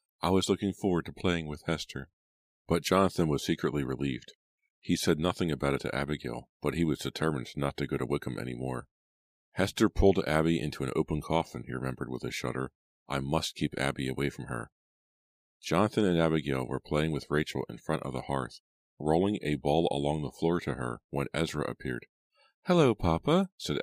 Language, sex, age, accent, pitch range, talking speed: English, male, 40-59, American, 70-80 Hz, 190 wpm